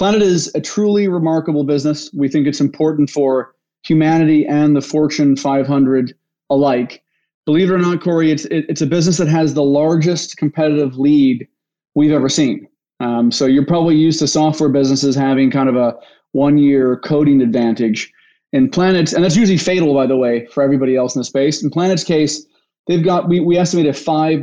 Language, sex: English, male